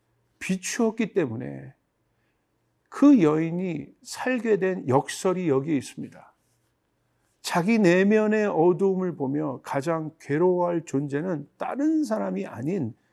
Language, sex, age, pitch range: Korean, male, 50-69, 140-195 Hz